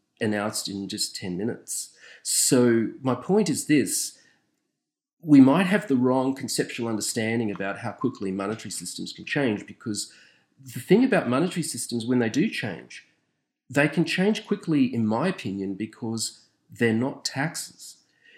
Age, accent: 40-59, Australian